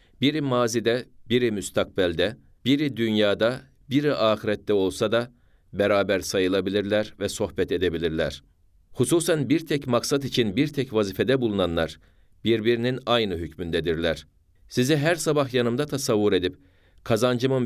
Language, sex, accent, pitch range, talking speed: Turkish, male, native, 95-125 Hz, 115 wpm